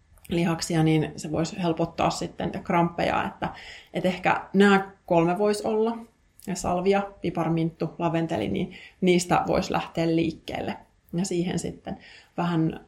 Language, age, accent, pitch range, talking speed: Finnish, 30-49, native, 165-195 Hz, 120 wpm